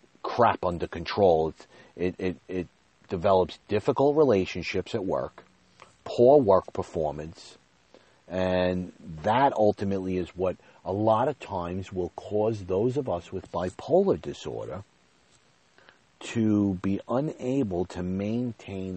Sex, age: male, 40-59